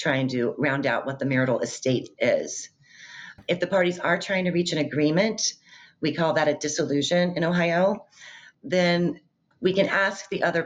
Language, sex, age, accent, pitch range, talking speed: English, female, 40-59, American, 145-180 Hz, 175 wpm